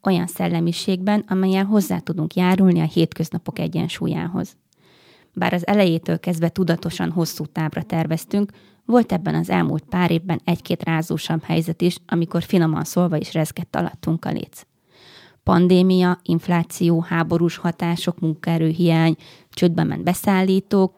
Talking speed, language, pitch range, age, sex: 125 wpm, Hungarian, 165-190 Hz, 20-39, female